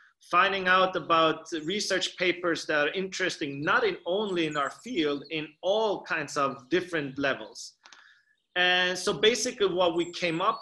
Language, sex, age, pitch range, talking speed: English, male, 30-49, 155-190 Hz, 155 wpm